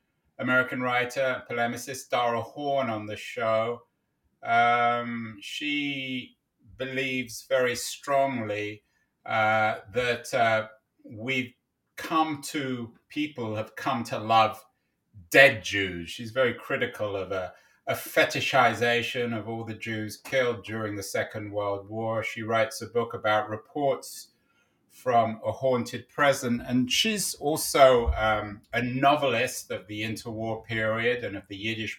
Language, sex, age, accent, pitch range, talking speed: English, male, 30-49, British, 105-125 Hz, 125 wpm